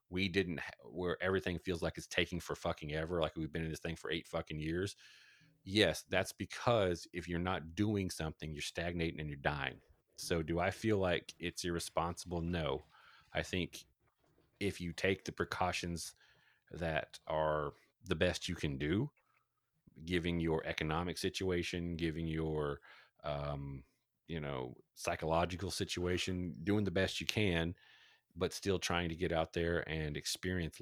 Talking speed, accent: 160 wpm, American